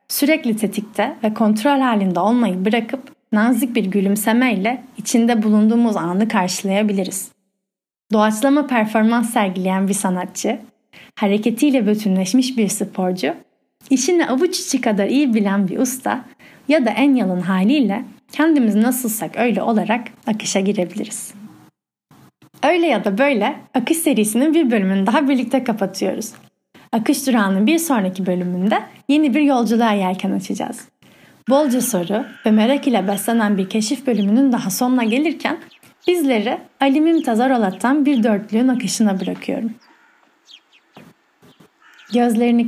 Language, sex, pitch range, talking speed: Turkish, female, 205-260 Hz, 120 wpm